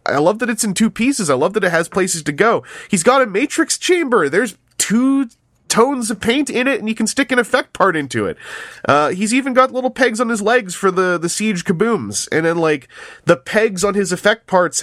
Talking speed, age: 240 wpm, 20-39